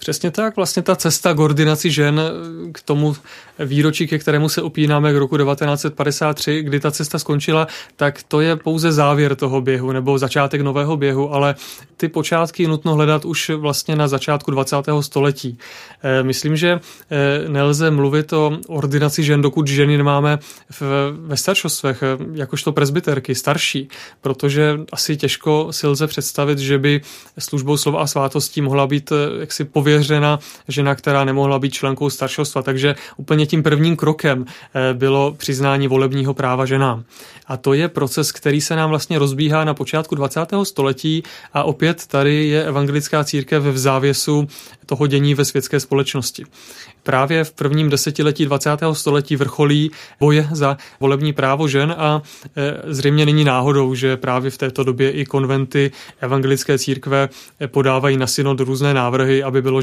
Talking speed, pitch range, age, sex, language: 150 wpm, 135-155 Hz, 30-49, male, Czech